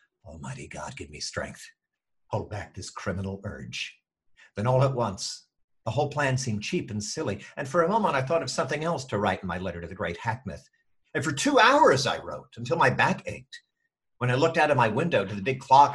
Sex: male